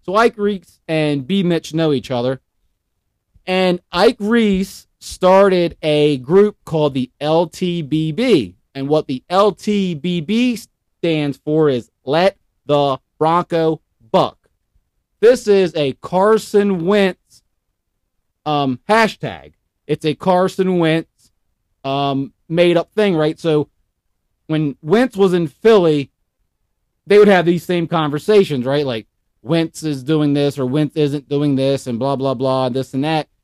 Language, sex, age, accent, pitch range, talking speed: English, male, 30-49, American, 140-205 Hz, 135 wpm